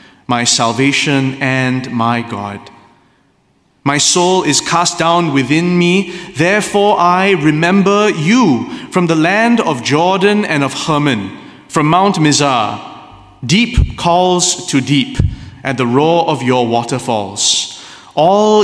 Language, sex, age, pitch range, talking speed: English, male, 30-49, 140-190 Hz, 120 wpm